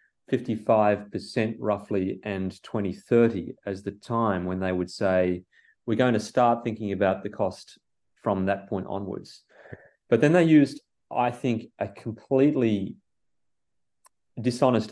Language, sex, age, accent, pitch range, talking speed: English, male, 30-49, Australian, 100-120 Hz, 125 wpm